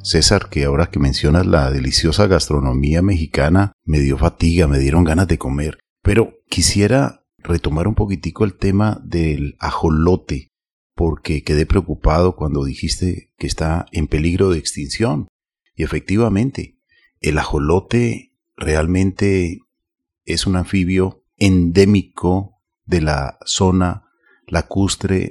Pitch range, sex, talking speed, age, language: 80-100 Hz, male, 120 wpm, 40-59, Spanish